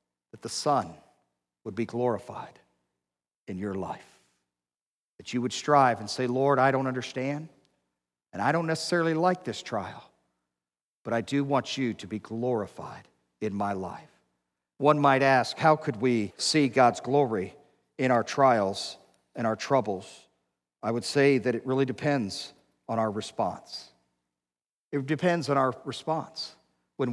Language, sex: English, male